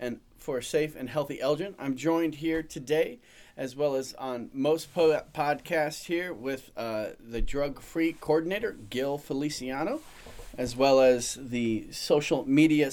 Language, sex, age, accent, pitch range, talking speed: English, male, 40-59, American, 120-160 Hz, 150 wpm